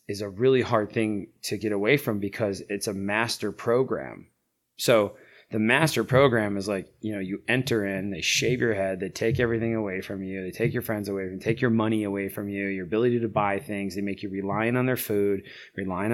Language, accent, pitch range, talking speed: English, American, 100-115 Hz, 225 wpm